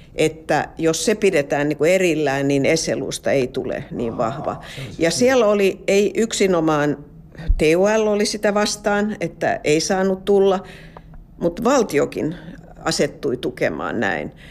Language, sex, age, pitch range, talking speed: Finnish, female, 50-69, 165-215 Hz, 125 wpm